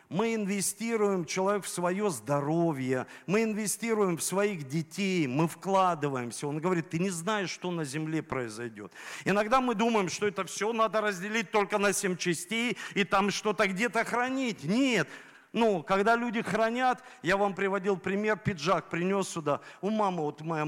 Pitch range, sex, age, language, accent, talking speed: 165-220 Hz, male, 50-69, Russian, native, 160 wpm